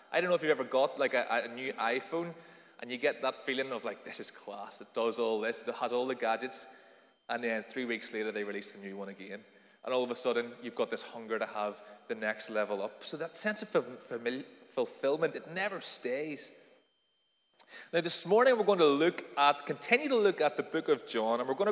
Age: 20-39